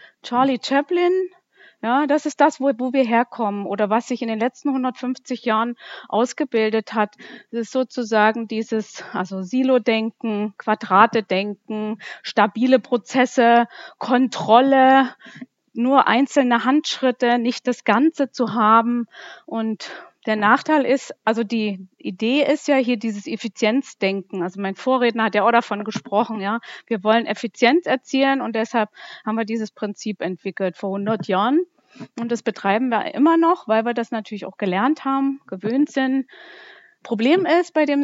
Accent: German